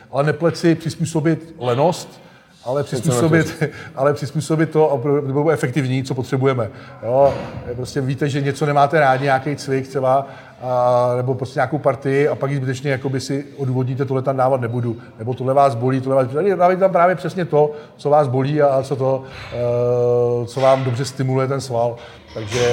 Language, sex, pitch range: Czech, male, 120-140 Hz